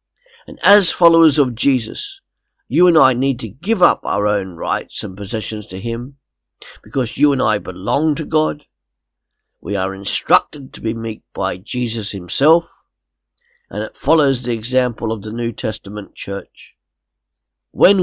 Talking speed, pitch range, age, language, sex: 155 wpm, 105-155 Hz, 50-69, English, male